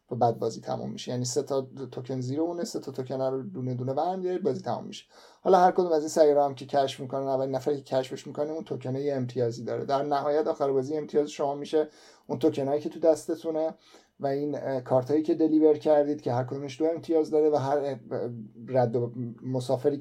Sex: male